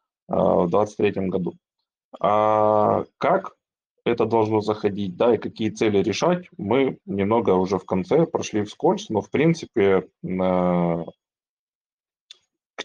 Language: Russian